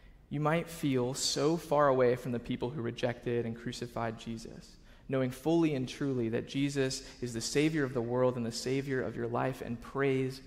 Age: 20-39